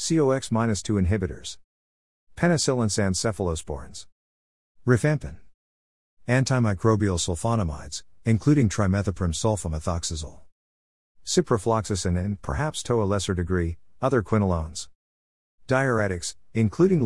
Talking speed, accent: 75 wpm, American